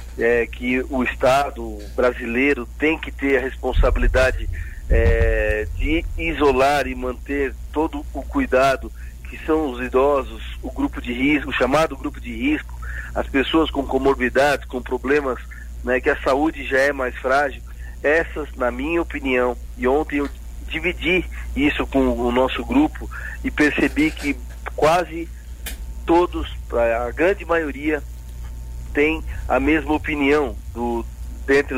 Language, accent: Portuguese, Brazilian